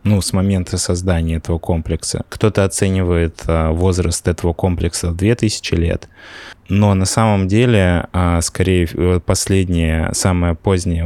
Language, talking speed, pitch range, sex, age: Russian, 120 wpm, 85-95 Hz, male, 20-39